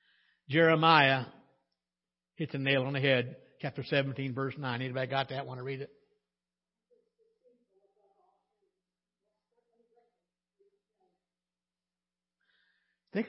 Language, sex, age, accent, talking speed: English, male, 60-79, American, 85 wpm